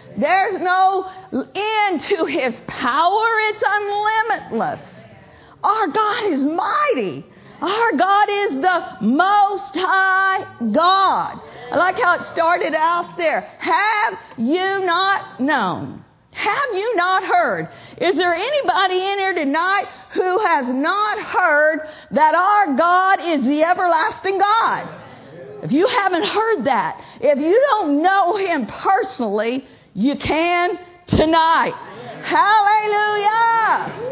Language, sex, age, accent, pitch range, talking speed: English, female, 50-69, American, 315-405 Hz, 115 wpm